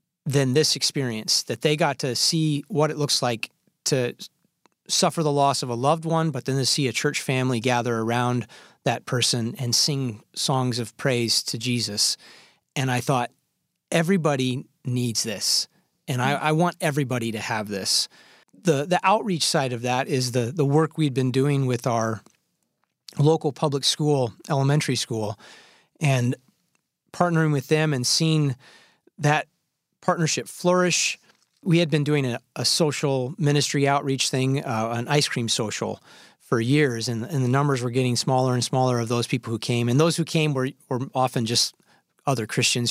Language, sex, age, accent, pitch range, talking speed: English, male, 30-49, American, 125-155 Hz, 170 wpm